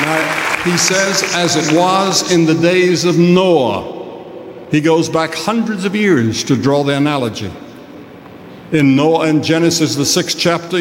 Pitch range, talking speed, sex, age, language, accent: 140-180 Hz, 155 wpm, male, 60-79, English, American